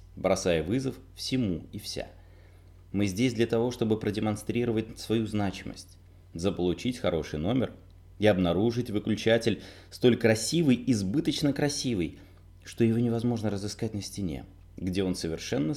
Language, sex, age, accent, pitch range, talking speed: Russian, male, 20-39, native, 90-115 Hz, 120 wpm